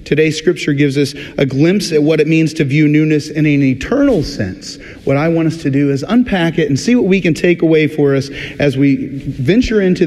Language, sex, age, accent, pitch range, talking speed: English, male, 40-59, American, 140-185 Hz, 230 wpm